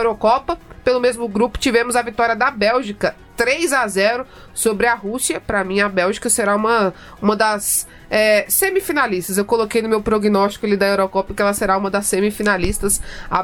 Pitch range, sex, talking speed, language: 205-245 Hz, female, 180 wpm, Portuguese